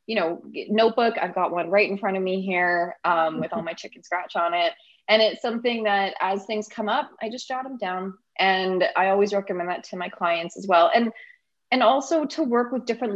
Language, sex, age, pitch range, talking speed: English, female, 20-39, 170-220 Hz, 230 wpm